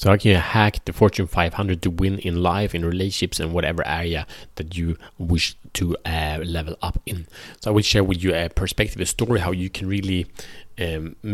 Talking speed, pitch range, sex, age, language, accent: 205 wpm, 80-95 Hz, male, 30-49, Swedish, Norwegian